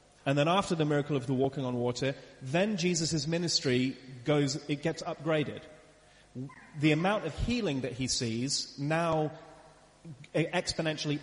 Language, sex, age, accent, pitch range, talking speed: English, male, 30-49, British, 130-155 Hz, 140 wpm